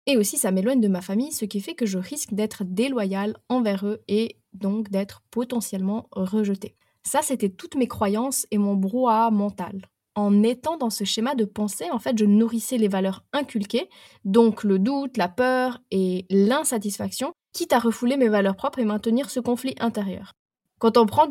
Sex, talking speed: female, 185 wpm